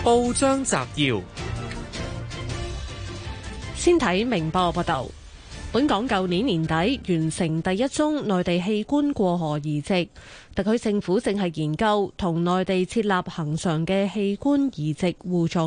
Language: Chinese